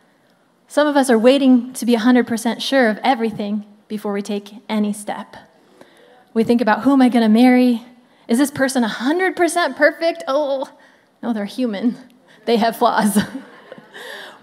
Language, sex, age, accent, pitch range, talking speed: English, female, 20-39, American, 230-320 Hz, 155 wpm